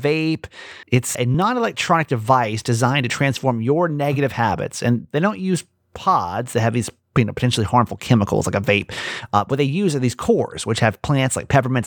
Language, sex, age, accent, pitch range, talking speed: English, male, 30-49, American, 115-150 Hz, 195 wpm